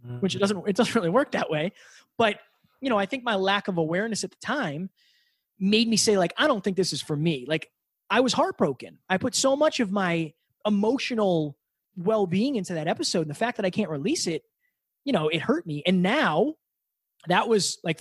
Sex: male